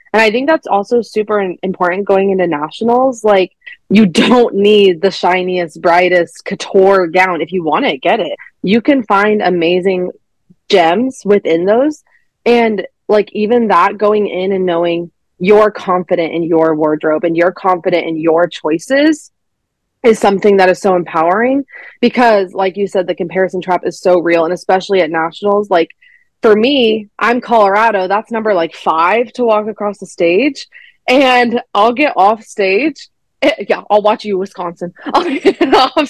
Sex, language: female, English